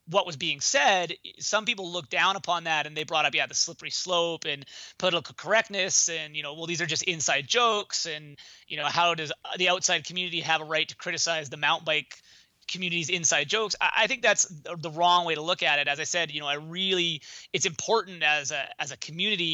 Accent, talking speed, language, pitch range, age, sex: American, 225 wpm, English, 155-180 Hz, 30-49, male